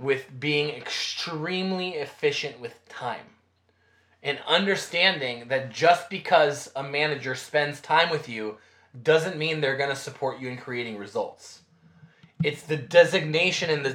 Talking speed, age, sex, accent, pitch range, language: 135 wpm, 20-39, male, American, 130-185 Hz, English